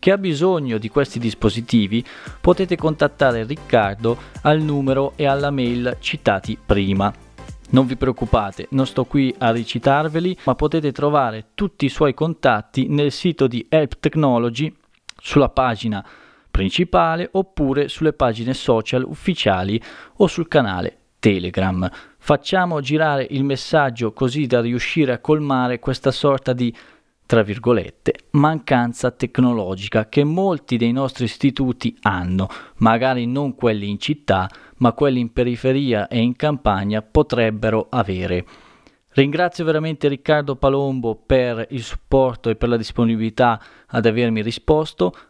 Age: 20-39